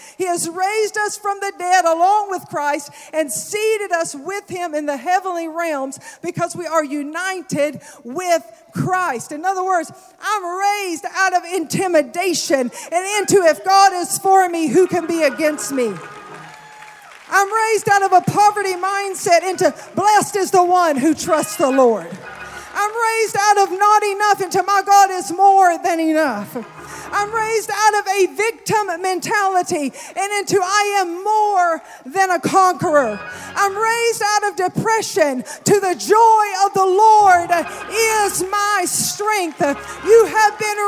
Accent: American